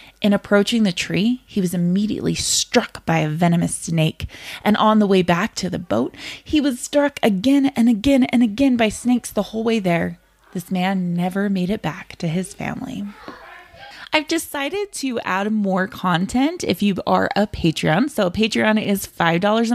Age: 20-39